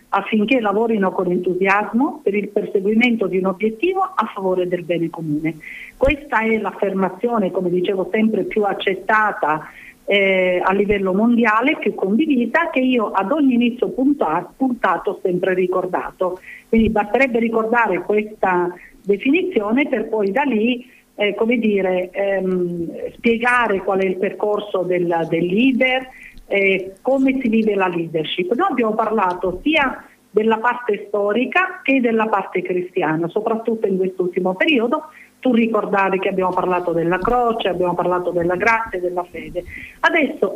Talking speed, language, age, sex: 140 wpm, Italian, 50-69, female